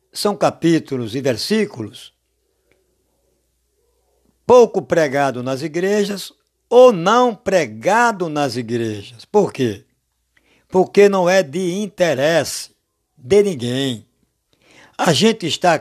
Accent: Brazilian